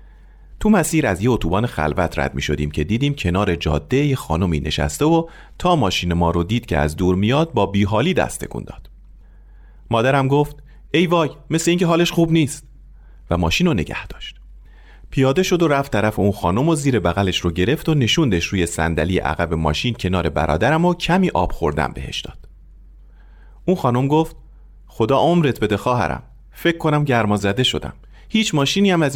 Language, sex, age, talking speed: Persian, male, 40-59, 175 wpm